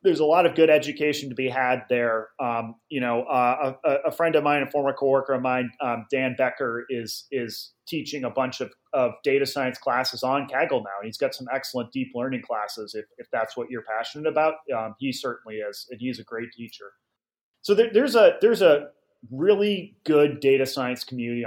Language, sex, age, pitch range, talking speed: English, male, 30-49, 130-175 Hz, 210 wpm